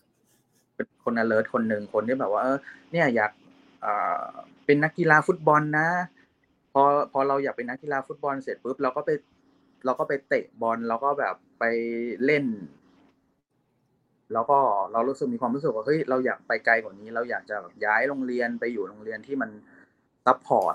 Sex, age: male, 20-39